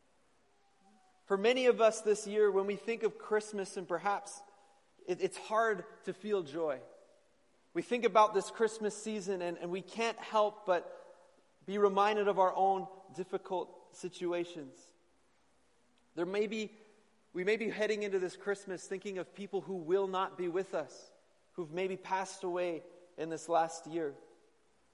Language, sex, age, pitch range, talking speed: English, male, 30-49, 175-210 Hz, 155 wpm